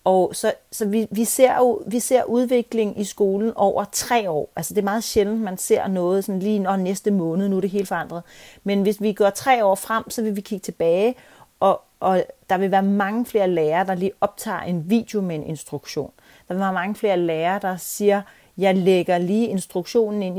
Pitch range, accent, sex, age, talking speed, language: 170-210 Hz, native, female, 40-59, 220 wpm, Danish